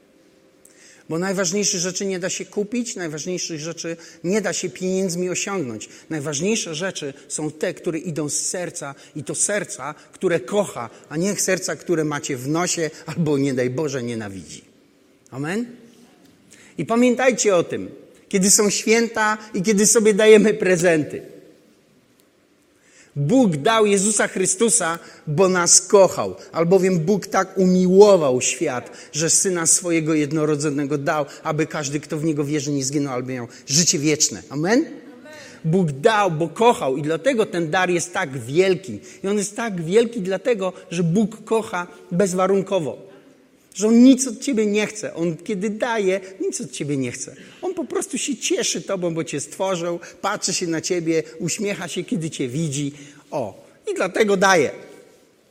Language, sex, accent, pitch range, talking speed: Polish, male, native, 155-210 Hz, 150 wpm